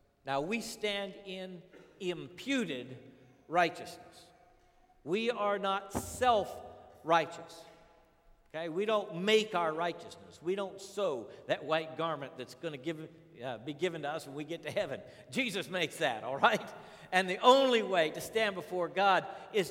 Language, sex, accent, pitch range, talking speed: English, male, American, 160-205 Hz, 150 wpm